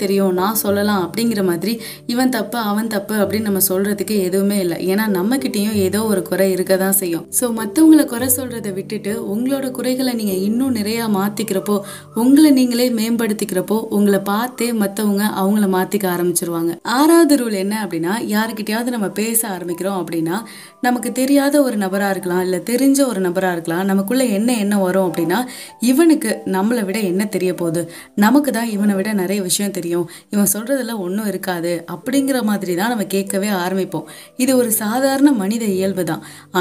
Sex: female